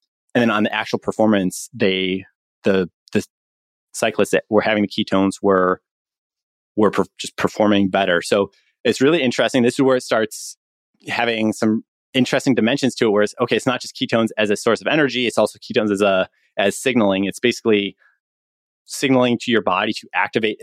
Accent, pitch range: American, 100-120 Hz